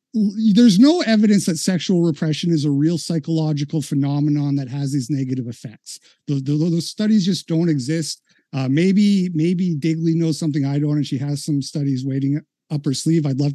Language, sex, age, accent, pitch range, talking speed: English, male, 50-69, American, 145-190 Hz, 175 wpm